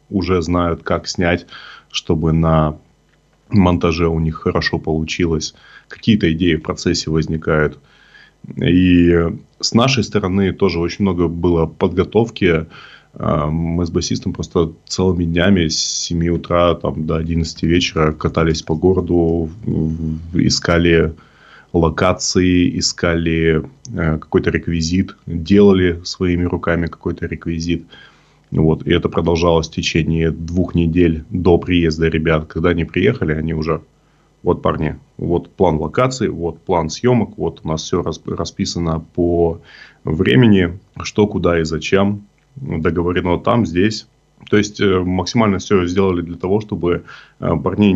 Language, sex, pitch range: Russian, male, 80-90 Hz